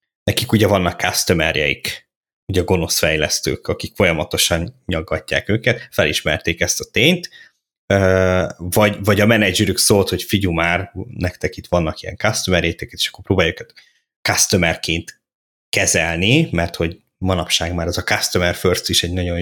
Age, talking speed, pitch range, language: 20-39, 140 wpm, 85-105 Hz, Hungarian